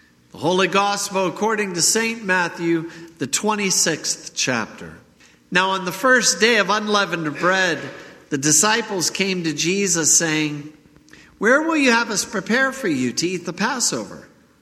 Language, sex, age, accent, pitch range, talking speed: English, male, 50-69, American, 125-180 Hz, 145 wpm